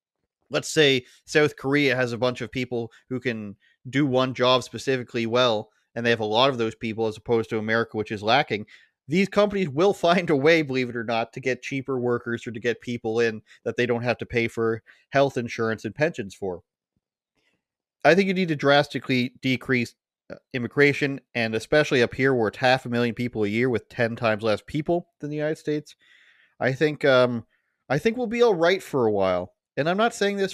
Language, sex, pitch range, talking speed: English, male, 115-150 Hz, 210 wpm